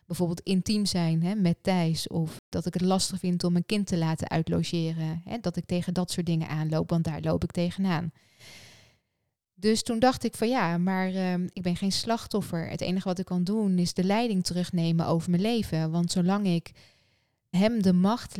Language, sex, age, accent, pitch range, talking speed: Dutch, female, 20-39, Dutch, 170-190 Hz, 195 wpm